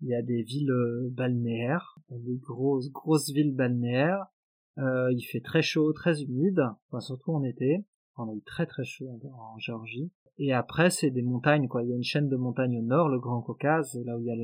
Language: French